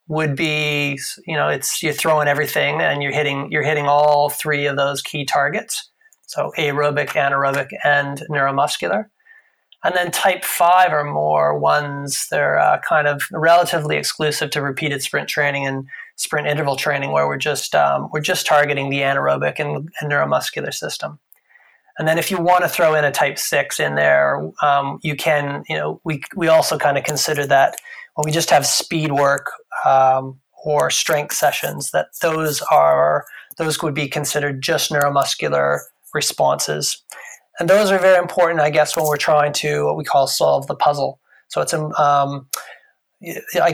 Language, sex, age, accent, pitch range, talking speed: English, male, 30-49, American, 140-160 Hz, 170 wpm